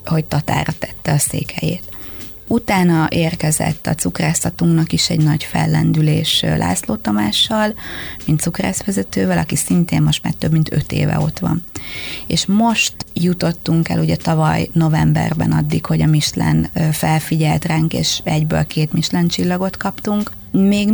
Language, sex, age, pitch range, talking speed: Hungarian, female, 30-49, 130-170 Hz, 130 wpm